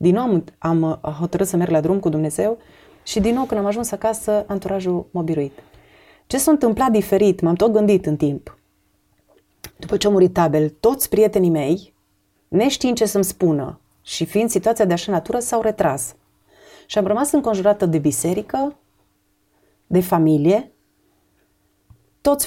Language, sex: Romanian, female